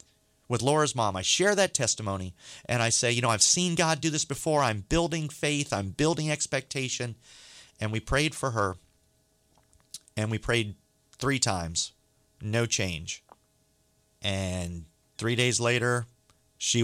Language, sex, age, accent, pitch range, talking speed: English, male, 40-59, American, 100-130 Hz, 145 wpm